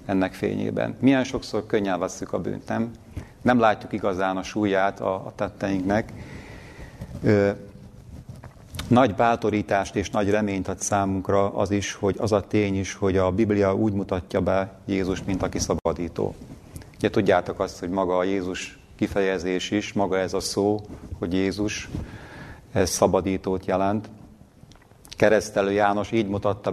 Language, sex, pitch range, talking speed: Hungarian, male, 95-105 Hz, 140 wpm